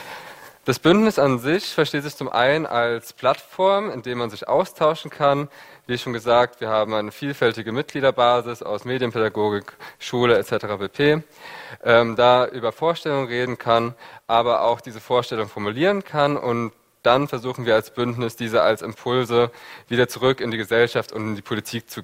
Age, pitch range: 20-39, 115-140 Hz